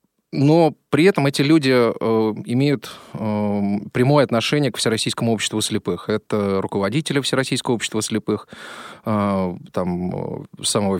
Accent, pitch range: native, 105-140 Hz